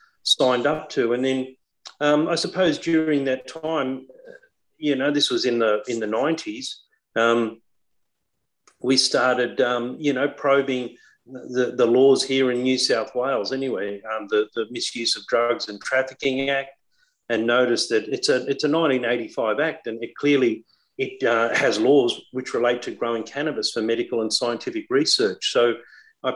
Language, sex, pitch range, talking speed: English, male, 120-150 Hz, 165 wpm